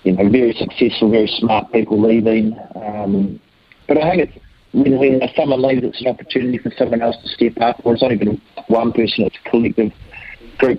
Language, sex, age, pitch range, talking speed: English, male, 40-59, 110-120 Hz, 210 wpm